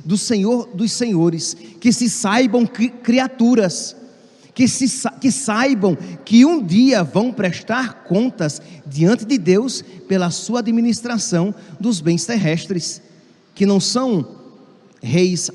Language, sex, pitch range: Portuguese, male, 160-215 Hz